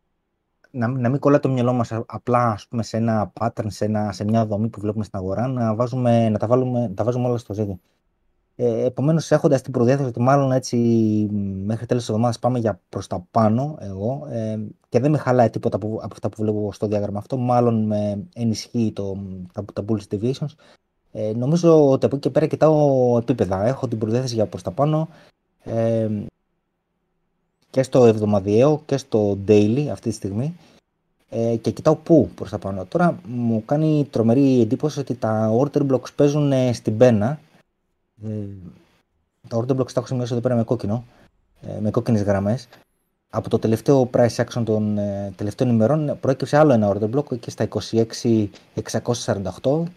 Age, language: 20-39, Greek